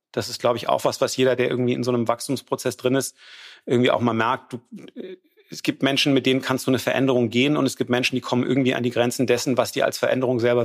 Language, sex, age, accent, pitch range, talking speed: German, male, 40-59, German, 115-135 Hz, 265 wpm